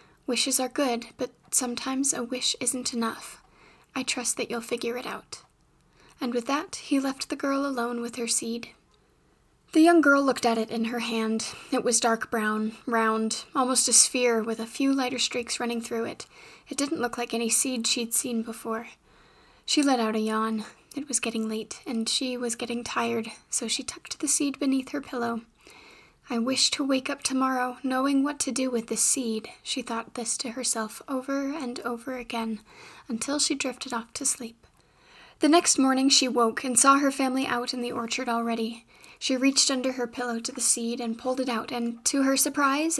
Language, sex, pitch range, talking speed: English, female, 235-270 Hz, 195 wpm